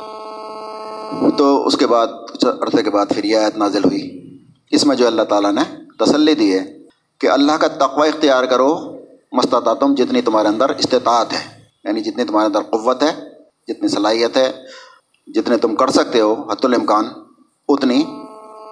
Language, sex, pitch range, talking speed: Urdu, male, 135-215 Hz, 165 wpm